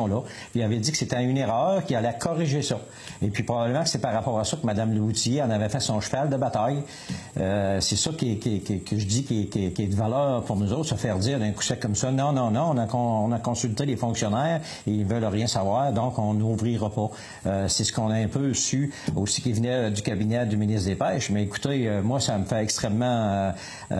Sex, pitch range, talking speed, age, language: male, 105-130 Hz, 255 wpm, 60-79, French